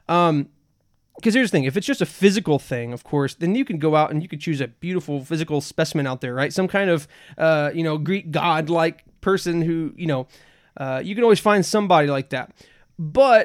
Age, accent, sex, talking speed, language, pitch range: 20-39, American, male, 225 wpm, English, 140-170 Hz